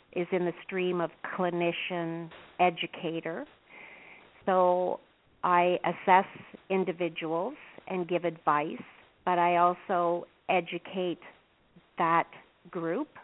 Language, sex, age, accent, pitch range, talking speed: English, female, 50-69, American, 160-180 Hz, 90 wpm